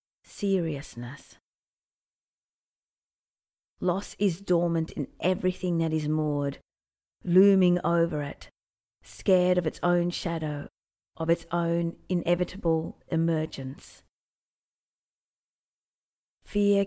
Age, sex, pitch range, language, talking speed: 40-59, female, 145-185 Hz, English, 80 wpm